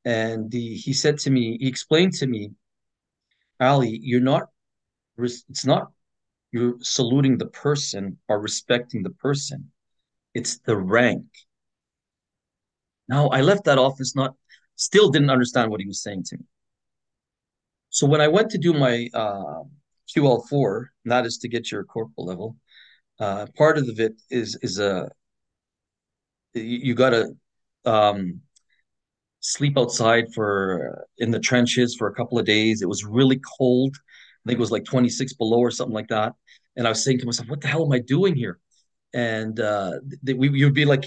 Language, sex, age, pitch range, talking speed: English, male, 40-59, 110-135 Hz, 170 wpm